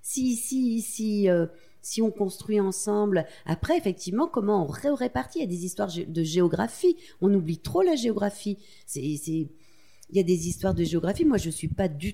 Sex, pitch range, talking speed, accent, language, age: female, 150-210 Hz, 210 wpm, French, French, 40-59